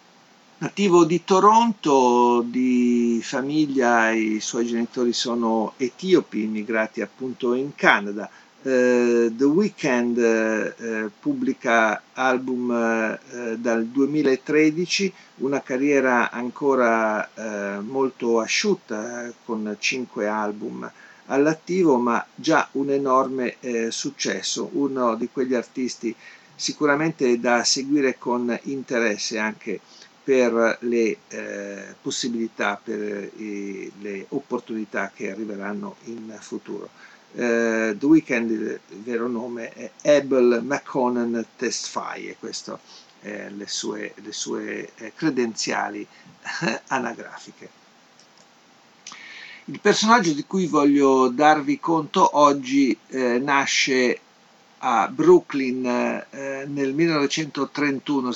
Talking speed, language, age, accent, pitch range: 100 wpm, Italian, 50-69, native, 115-140 Hz